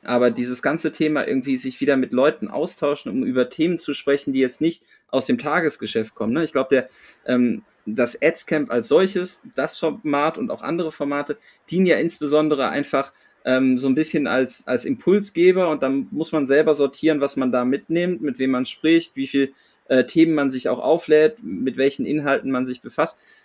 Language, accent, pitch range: German, German, 135-170 Hz